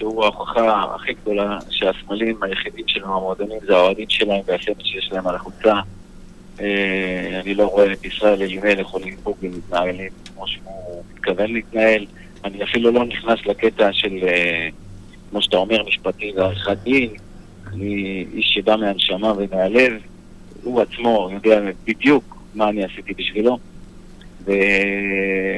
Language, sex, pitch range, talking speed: Hebrew, male, 95-115 Hz, 130 wpm